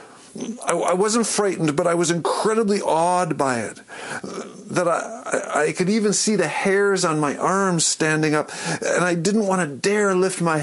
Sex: male